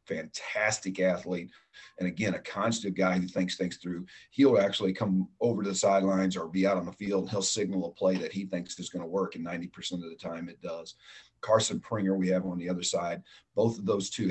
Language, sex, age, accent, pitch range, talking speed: English, male, 40-59, American, 90-100 Hz, 230 wpm